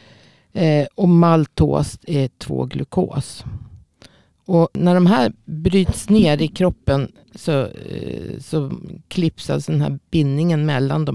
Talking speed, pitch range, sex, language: 115 wpm, 135-170 Hz, female, Swedish